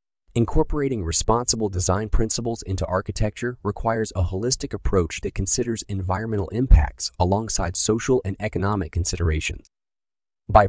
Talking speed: 110 wpm